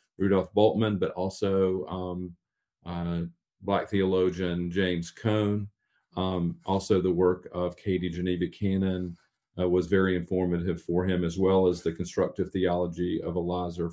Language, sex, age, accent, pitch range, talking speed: English, male, 40-59, American, 90-100 Hz, 140 wpm